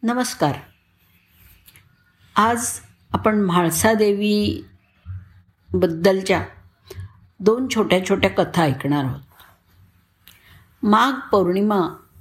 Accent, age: native, 50-69